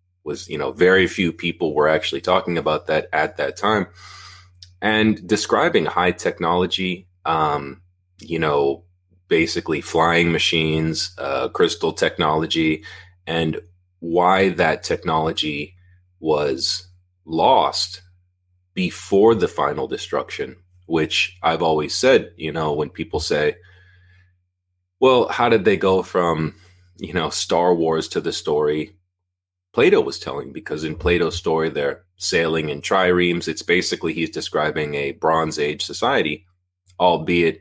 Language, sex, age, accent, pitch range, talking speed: English, male, 30-49, American, 80-90 Hz, 125 wpm